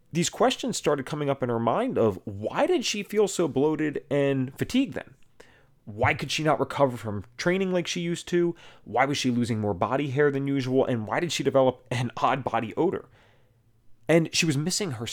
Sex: male